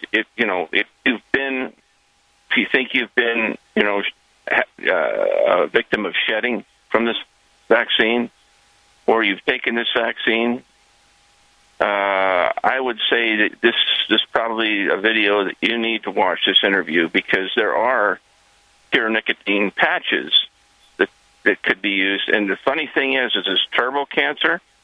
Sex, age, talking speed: male, 50-69, 150 wpm